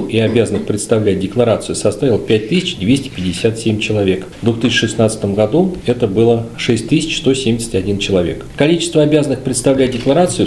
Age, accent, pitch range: 40-59, native, 105-140 Hz